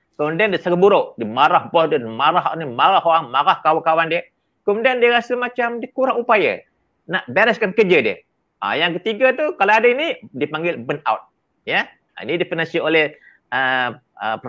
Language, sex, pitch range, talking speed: Malay, male, 170-245 Hz, 170 wpm